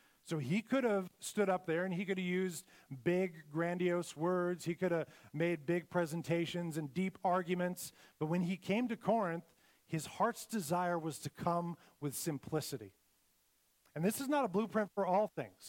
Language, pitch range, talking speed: English, 145-175 Hz, 180 wpm